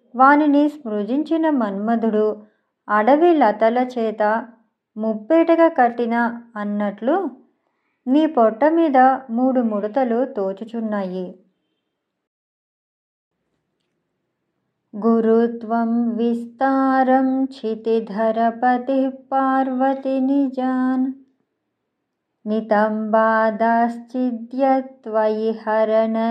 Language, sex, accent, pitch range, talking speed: Telugu, male, native, 225-265 Hz, 50 wpm